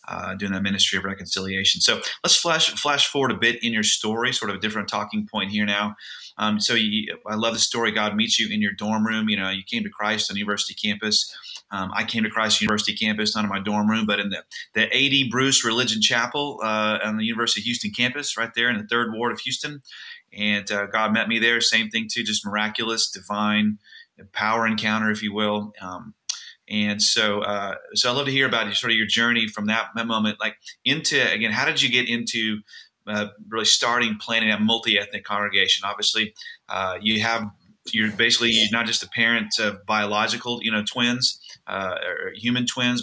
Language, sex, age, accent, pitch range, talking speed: English, male, 30-49, American, 105-115 Hz, 210 wpm